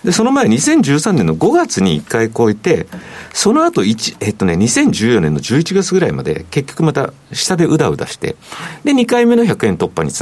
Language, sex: Japanese, male